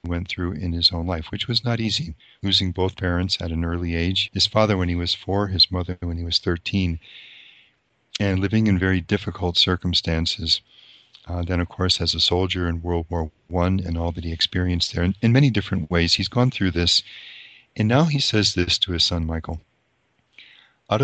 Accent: American